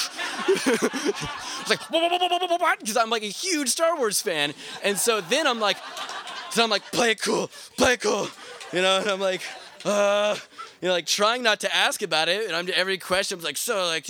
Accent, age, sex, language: American, 20-39, male, English